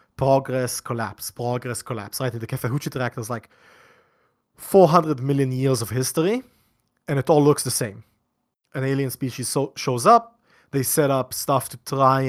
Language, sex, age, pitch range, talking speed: English, male, 30-49, 120-145 Hz, 165 wpm